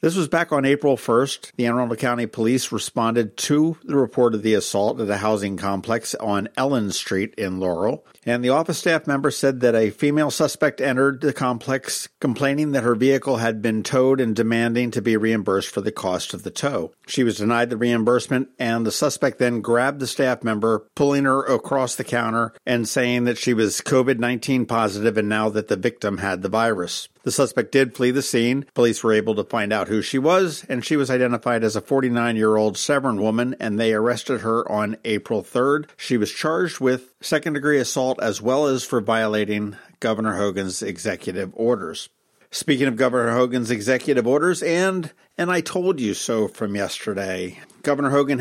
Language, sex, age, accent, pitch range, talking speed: English, male, 50-69, American, 115-140 Hz, 190 wpm